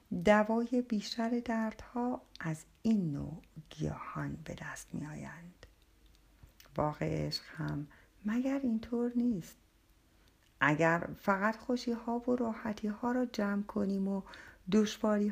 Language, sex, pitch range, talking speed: Persian, female, 170-230 Hz, 115 wpm